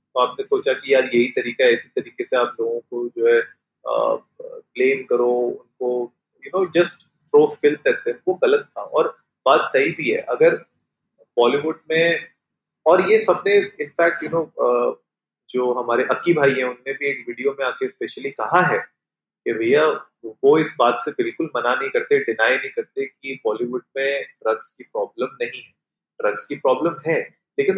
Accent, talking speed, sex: native, 180 wpm, male